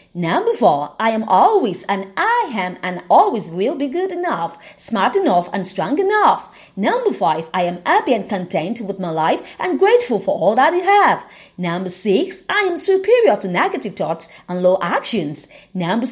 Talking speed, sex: 180 wpm, female